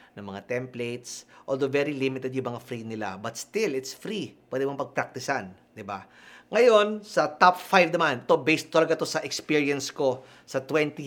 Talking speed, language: 180 wpm, Filipino